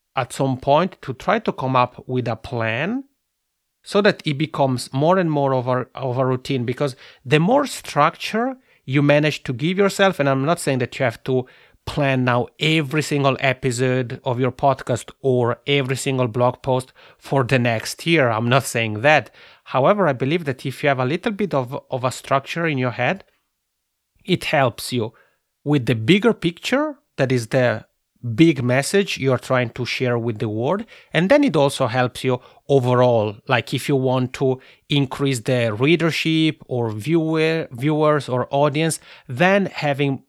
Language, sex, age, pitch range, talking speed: English, male, 30-49, 125-155 Hz, 175 wpm